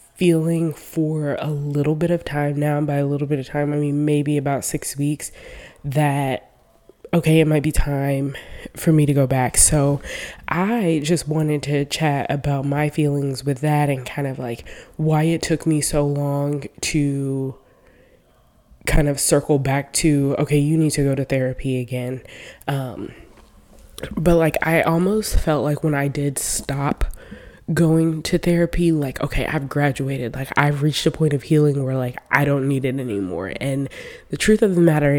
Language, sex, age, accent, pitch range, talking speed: English, female, 20-39, American, 140-155 Hz, 180 wpm